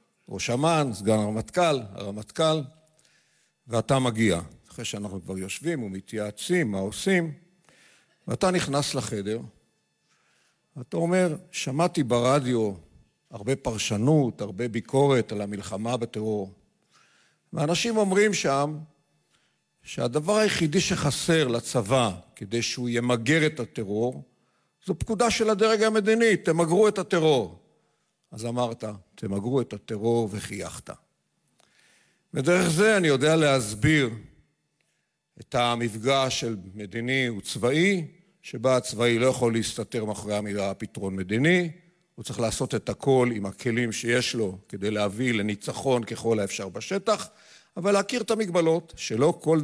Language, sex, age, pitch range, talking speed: Hebrew, male, 50-69, 110-160 Hz, 115 wpm